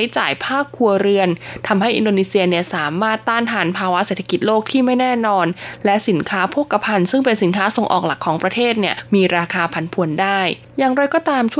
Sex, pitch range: female, 185-230 Hz